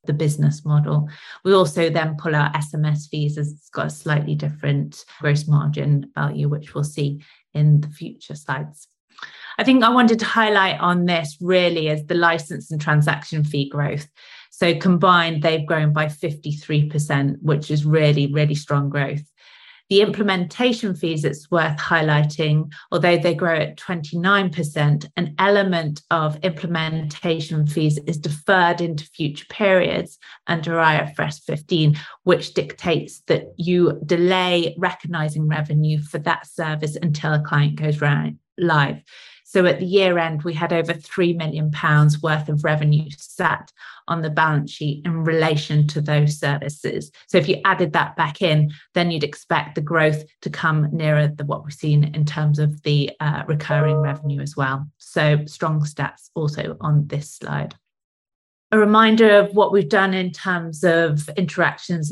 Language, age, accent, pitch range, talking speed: English, 30-49, British, 150-170 Hz, 155 wpm